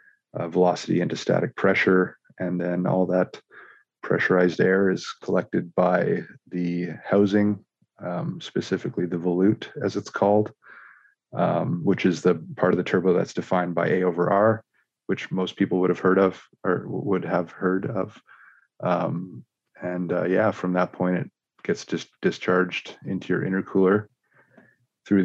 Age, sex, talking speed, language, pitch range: 30-49, male, 150 wpm, English, 95-100 Hz